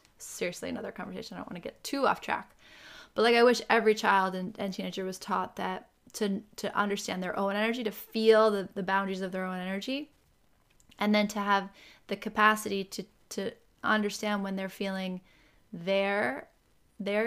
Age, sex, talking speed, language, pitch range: 20-39, female, 180 wpm, English, 195-230 Hz